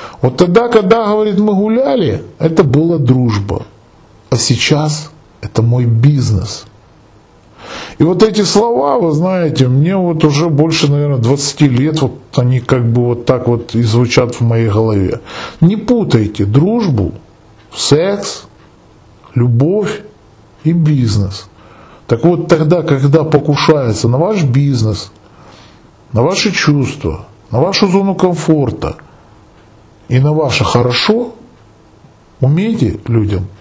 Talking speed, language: 120 wpm, Russian